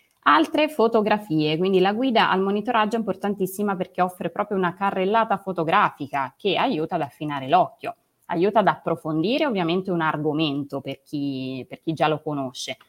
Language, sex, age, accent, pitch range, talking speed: Italian, female, 20-39, native, 150-190 Hz, 155 wpm